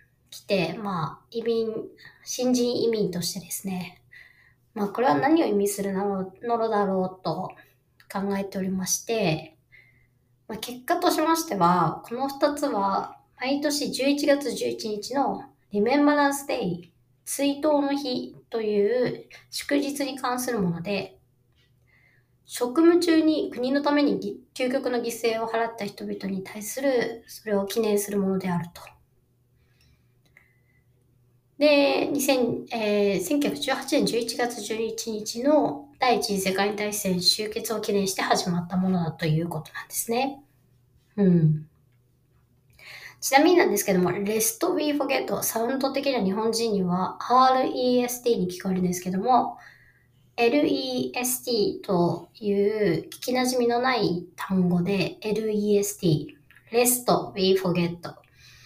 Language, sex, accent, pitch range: English, male, Japanese, 180-255 Hz